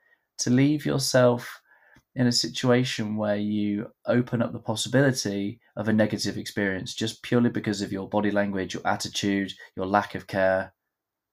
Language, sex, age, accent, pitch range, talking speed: English, male, 20-39, British, 100-120 Hz, 155 wpm